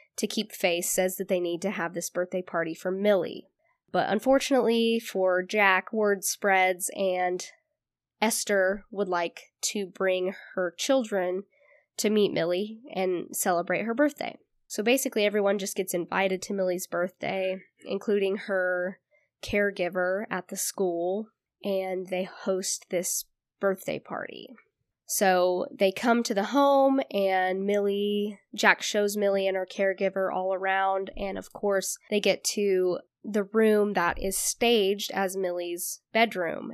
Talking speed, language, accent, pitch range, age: 140 wpm, English, American, 185-215 Hz, 10-29